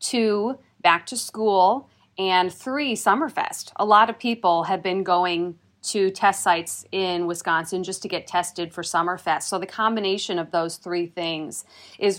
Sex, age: female, 40-59